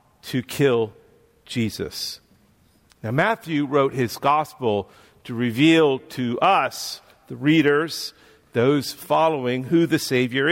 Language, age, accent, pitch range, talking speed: English, 50-69, American, 130-160 Hz, 110 wpm